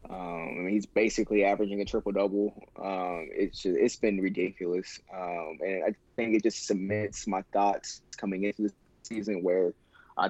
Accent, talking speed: American, 170 wpm